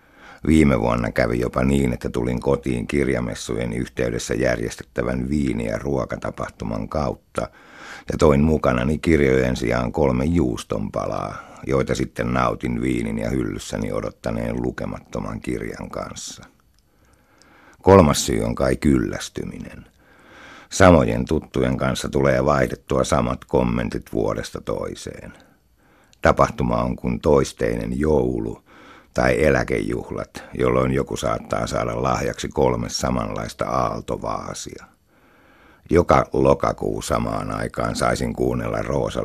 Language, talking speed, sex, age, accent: Finnish, 105 wpm, male, 60-79, native